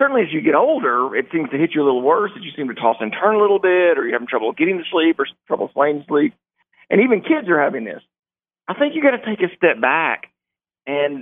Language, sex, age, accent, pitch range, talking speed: English, male, 50-69, American, 140-180 Hz, 265 wpm